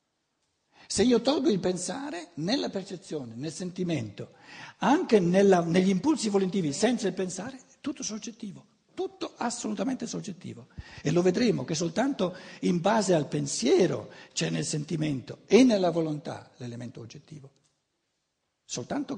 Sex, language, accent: male, Italian, native